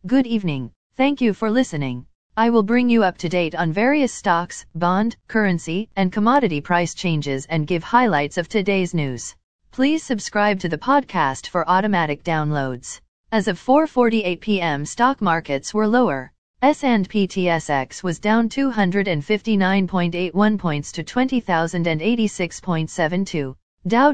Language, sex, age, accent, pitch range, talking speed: English, female, 40-59, American, 165-215 Hz, 130 wpm